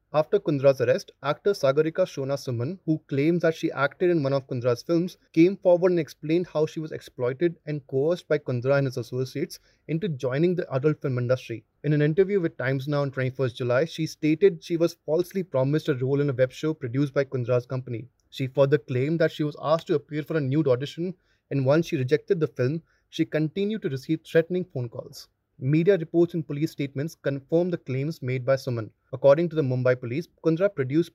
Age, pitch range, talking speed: 30-49, 130-165 Hz, 205 wpm